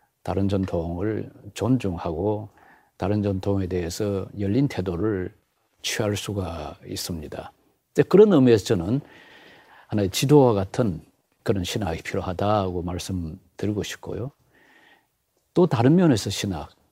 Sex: male